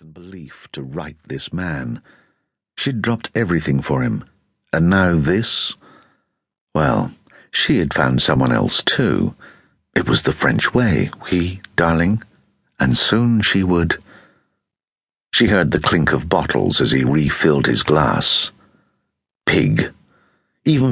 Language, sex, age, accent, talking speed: English, male, 60-79, British, 125 wpm